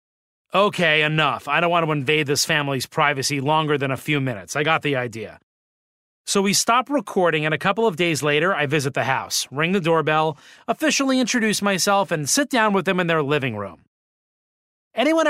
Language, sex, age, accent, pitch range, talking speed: English, male, 30-49, American, 145-200 Hz, 190 wpm